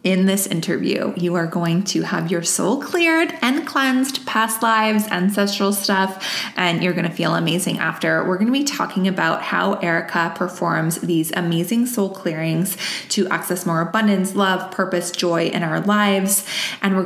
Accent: American